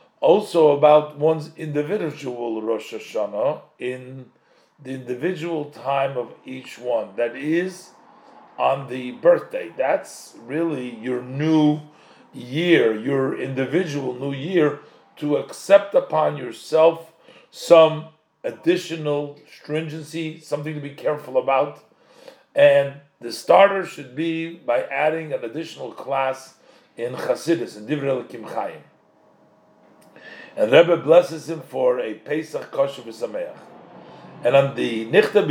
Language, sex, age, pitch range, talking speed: English, male, 40-59, 140-185 Hz, 115 wpm